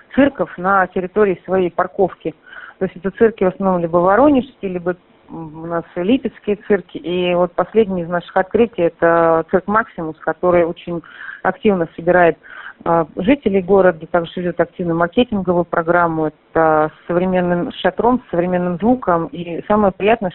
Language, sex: Russian, female